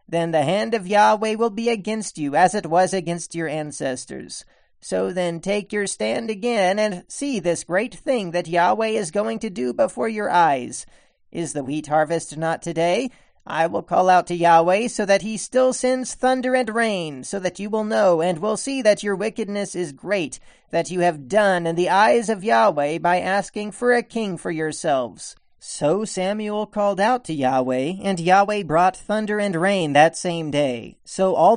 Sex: male